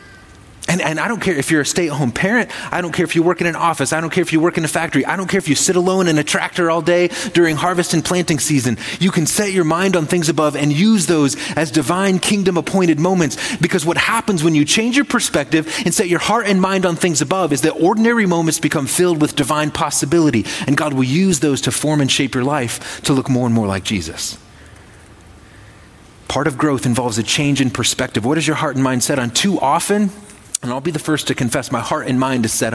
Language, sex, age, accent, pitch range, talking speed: English, male, 30-49, American, 120-170 Hz, 250 wpm